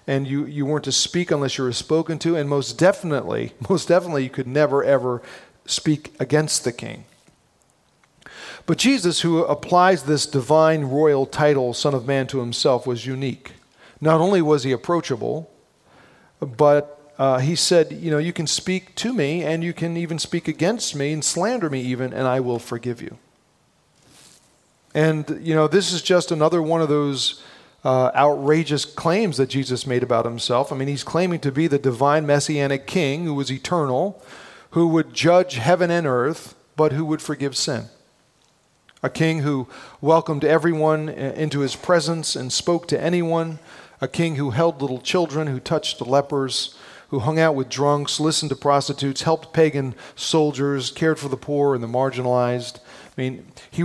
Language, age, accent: English, 40-59, American